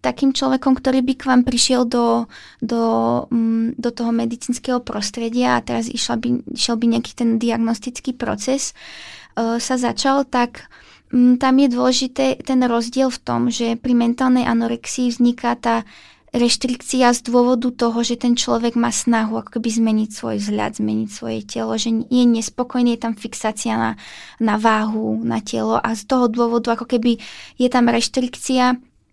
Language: Czech